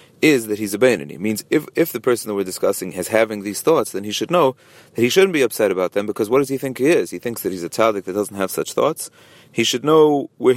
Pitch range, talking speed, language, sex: 105-135 Hz, 290 wpm, English, male